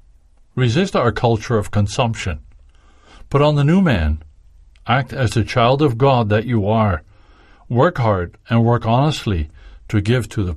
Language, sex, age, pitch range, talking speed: English, male, 50-69, 95-120 Hz, 160 wpm